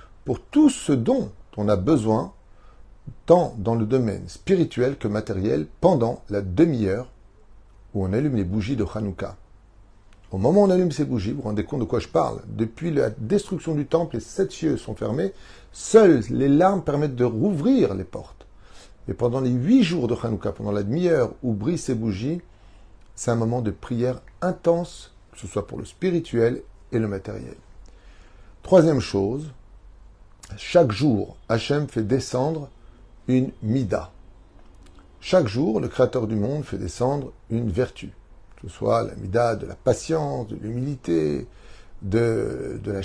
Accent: French